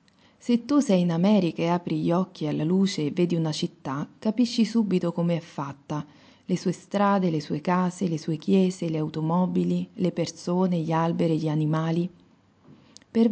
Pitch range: 160-200 Hz